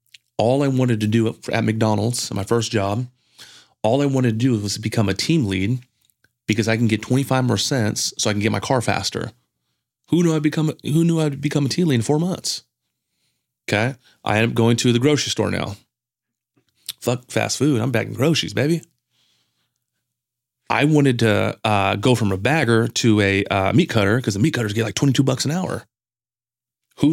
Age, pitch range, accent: 30-49, 110-135 Hz, American